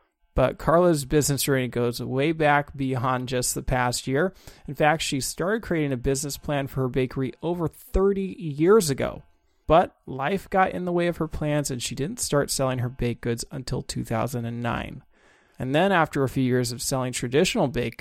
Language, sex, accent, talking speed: English, male, American, 185 wpm